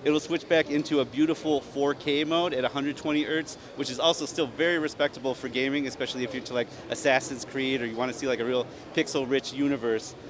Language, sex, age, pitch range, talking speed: English, male, 30-49, 125-150 Hz, 220 wpm